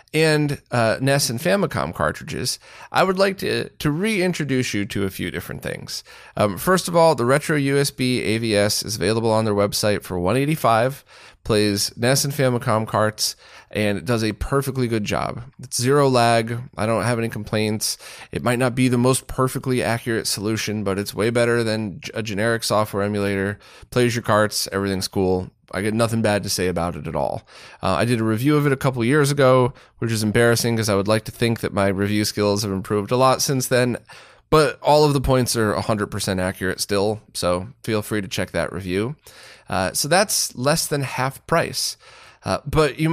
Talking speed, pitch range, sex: 200 wpm, 105-140 Hz, male